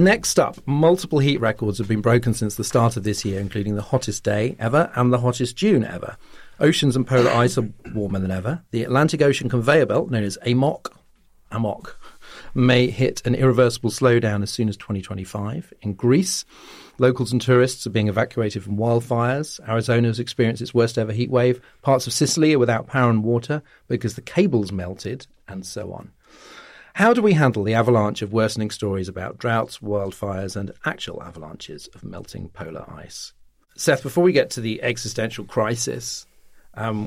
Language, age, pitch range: English, 40-59, 105-125 Hz